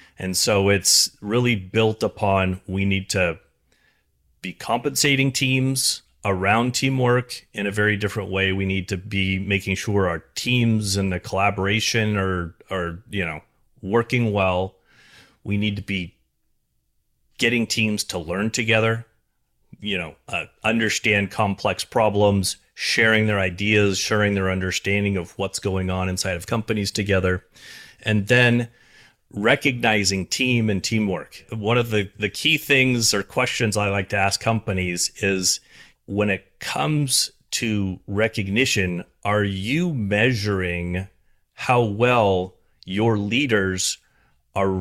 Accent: American